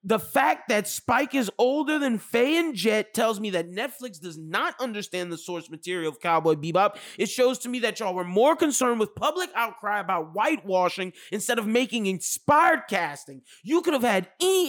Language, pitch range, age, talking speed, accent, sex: English, 205-295 Hz, 20-39, 190 wpm, American, male